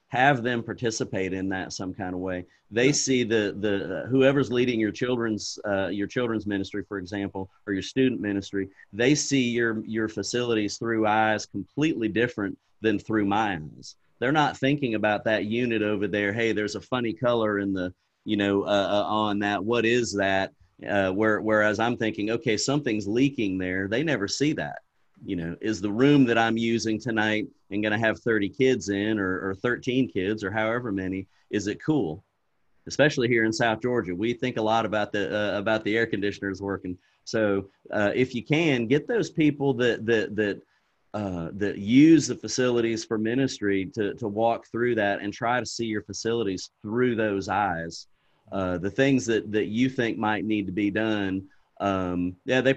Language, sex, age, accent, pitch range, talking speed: English, male, 40-59, American, 100-120 Hz, 190 wpm